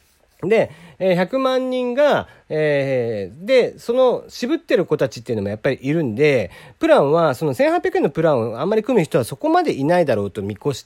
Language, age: Japanese, 40-59